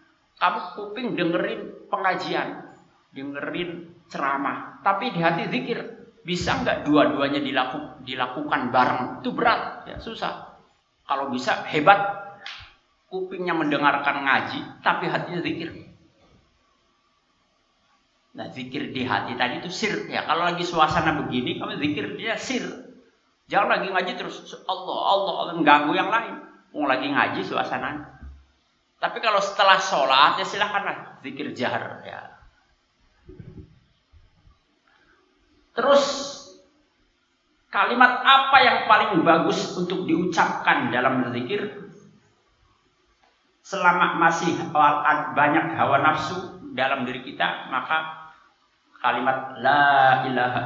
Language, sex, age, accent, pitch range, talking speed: Indonesian, male, 50-69, native, 130-200 Hz, 105 wpm